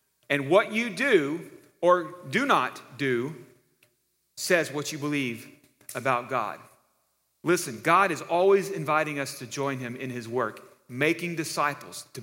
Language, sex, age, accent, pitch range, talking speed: English, male, 40-59, American, 125-175 Hz, 140 wpm